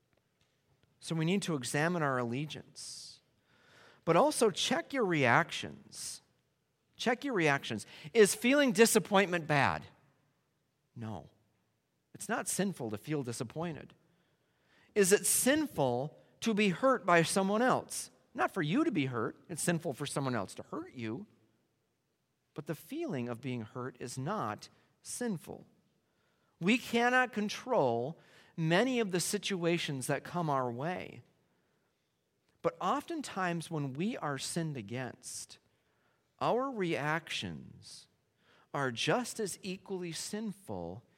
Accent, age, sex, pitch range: American, 40-59, male, 140-210 Hz